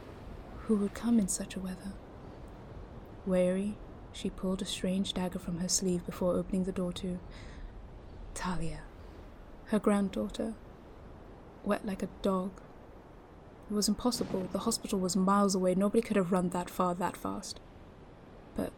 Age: 20-39